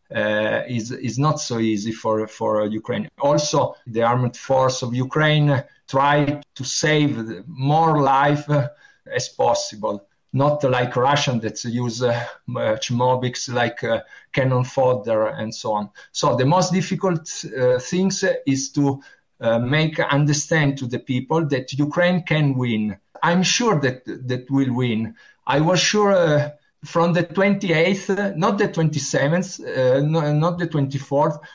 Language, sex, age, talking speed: Ukrainian, male, 50-69, 150 wpm